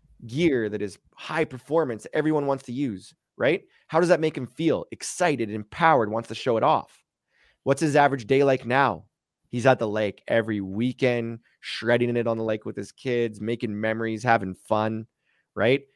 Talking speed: 180 wpm